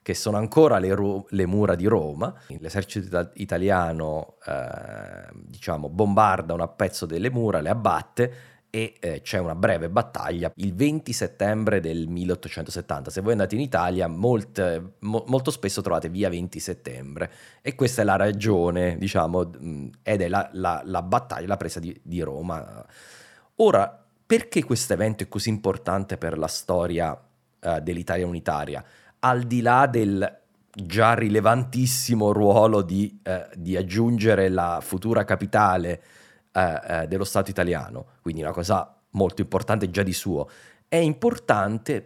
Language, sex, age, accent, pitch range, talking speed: Italian, male, 30-49, native, 90-110 Hz, 140 wpm